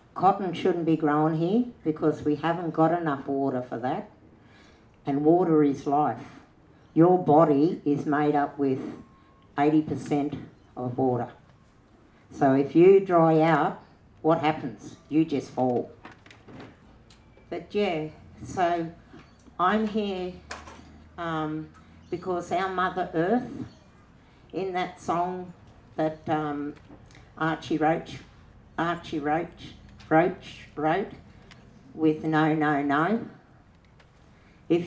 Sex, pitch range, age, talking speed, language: female, 130-170 Hz, 60-79, 110 wpm, English